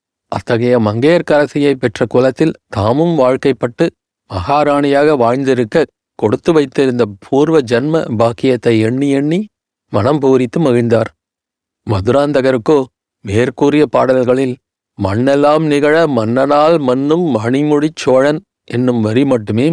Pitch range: 120-150 Hz